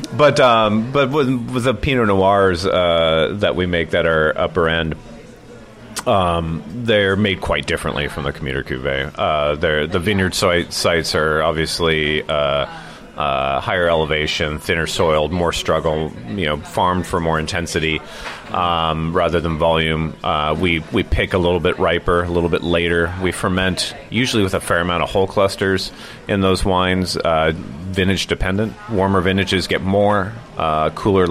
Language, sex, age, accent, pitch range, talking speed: English, male, 30-49, American, 80-100 Hz, 160 wpm